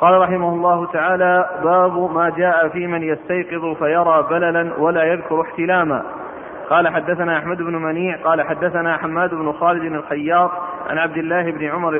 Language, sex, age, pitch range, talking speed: Arabic, male, 40-59, 160-180 Hz, 155 wpm